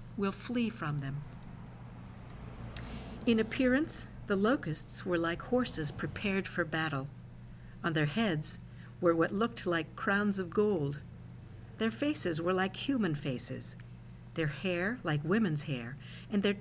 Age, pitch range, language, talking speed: 50-69, 140-215 Hz, English, 135 wpm